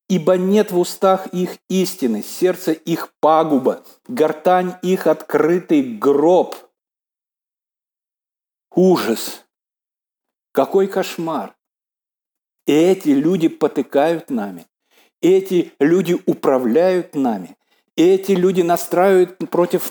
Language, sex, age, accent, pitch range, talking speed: Russian, male, 50-69, native, 150-185 Hz, 85 wpm